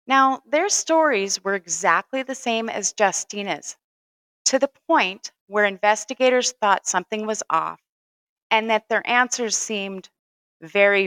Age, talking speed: 30-49, 130 wpm